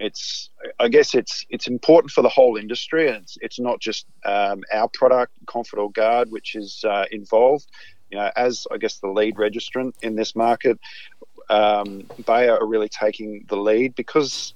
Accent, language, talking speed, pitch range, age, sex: Australian, English, 180 wpm, 105-130 Hz, 40-59, male